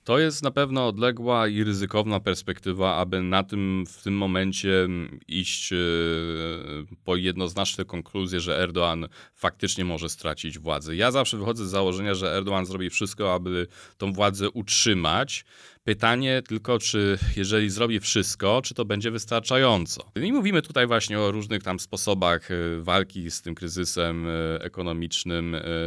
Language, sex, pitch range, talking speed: Polish, male, 95-120 Hz, 140 wpm